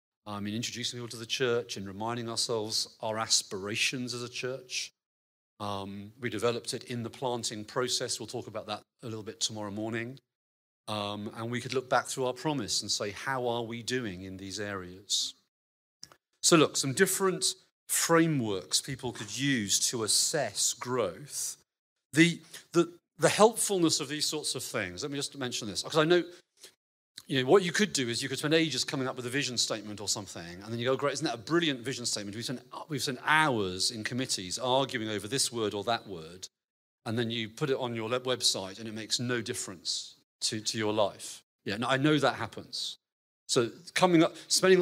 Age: 40-59